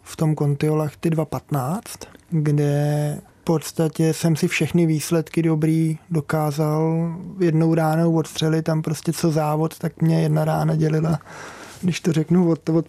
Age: 20-39